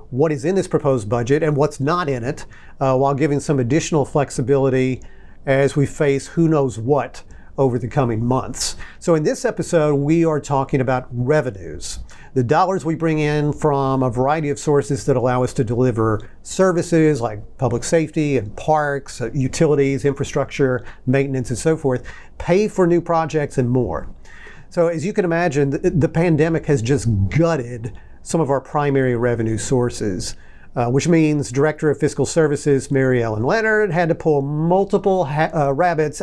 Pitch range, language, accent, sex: 130-160 Hz, English, American, male